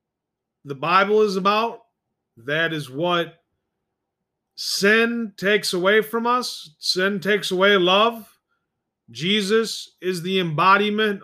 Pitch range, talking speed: 170-215 Hz, 105 wpm